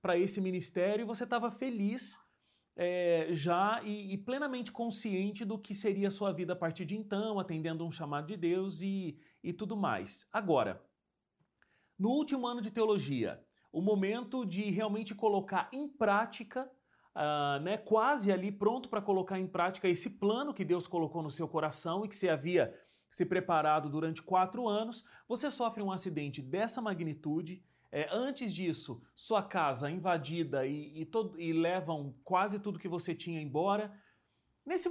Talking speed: 160 wpm